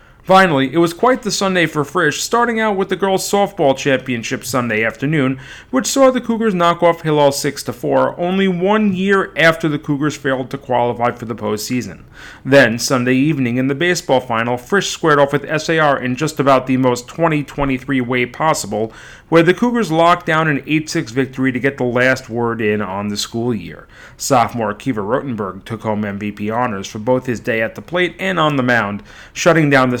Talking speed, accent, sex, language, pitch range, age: 190 wpm, American, male, English, 115-160 Hz, 40-59